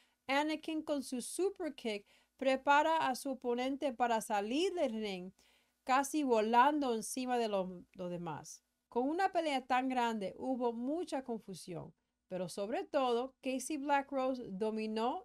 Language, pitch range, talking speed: English, 220-280 Hz, 135 wpm